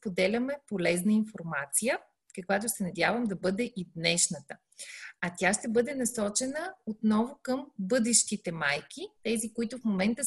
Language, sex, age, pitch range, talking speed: Bulgarian, female, 30-49, 185-250 Hz, 135 wpm